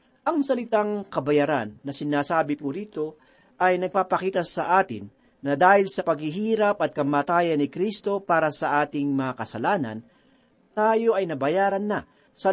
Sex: male